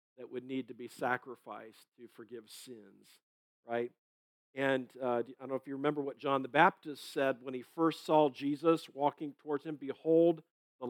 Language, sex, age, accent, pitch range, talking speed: English, male, 50-69, American, 125-155 Hz, 180 wpm